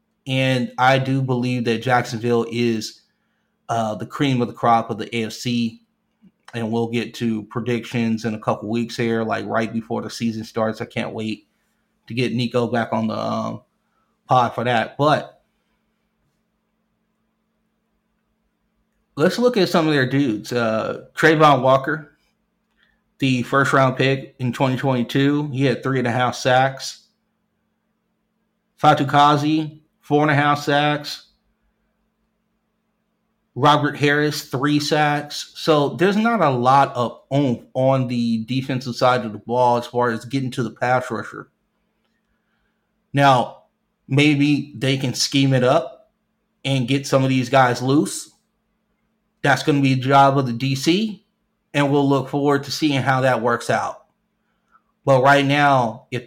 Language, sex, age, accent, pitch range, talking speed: English, male, 30-49, American, 120-165 Hz, 145 wpm